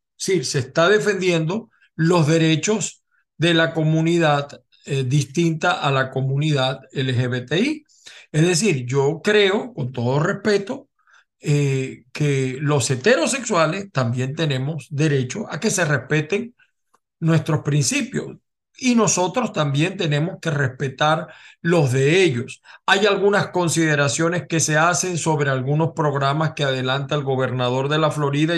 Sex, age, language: male, 40-59, Spanish